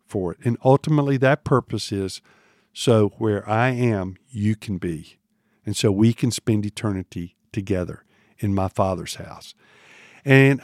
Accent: American